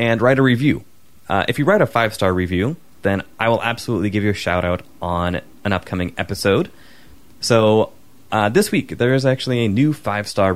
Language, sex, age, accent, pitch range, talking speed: English, male, 20-39, American, 95-125 Hz, 190 wpm